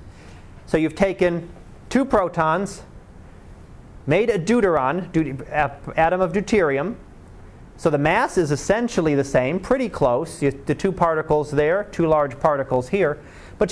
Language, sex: English, male